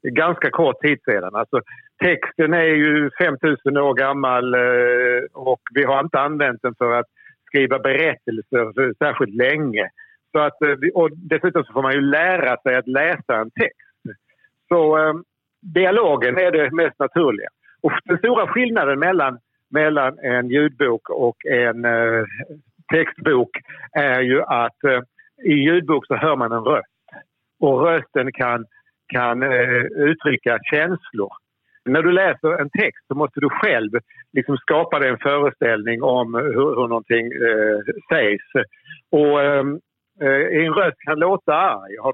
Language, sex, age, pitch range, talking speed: Swedish, male, 60-79, 125-175 Hz, 145 wpm